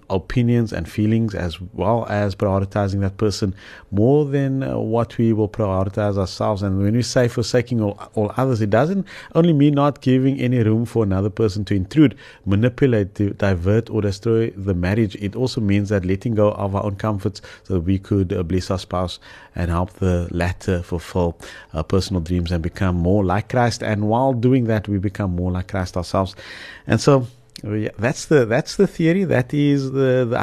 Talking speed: 190 wpm